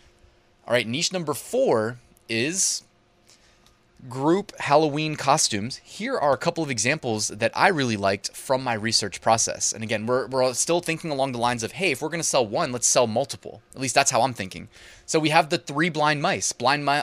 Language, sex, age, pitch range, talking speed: English, male, 20-39, 110-150 Hz, 200 wpm